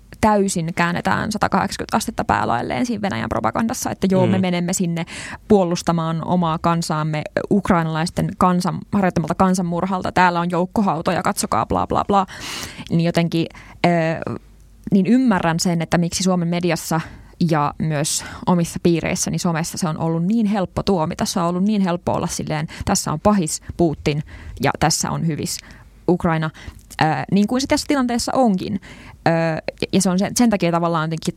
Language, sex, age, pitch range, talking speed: Finnish, female, 20-39, 165-195 Hz, 155 wpm